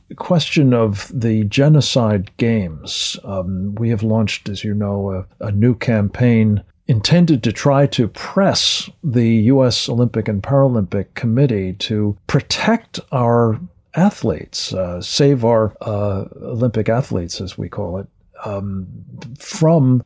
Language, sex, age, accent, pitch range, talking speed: English, male, 50-69, American, 100-135 Hz, 130 wpm